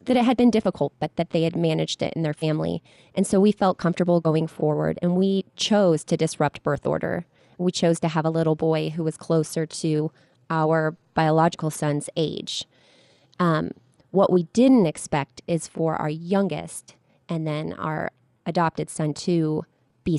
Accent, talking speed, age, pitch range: American, 175 wpm, 20-39, 150-175 Hz